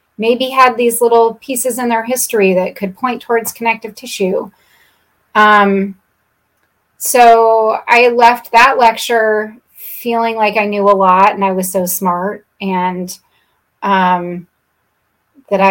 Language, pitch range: English, 195-235 Hz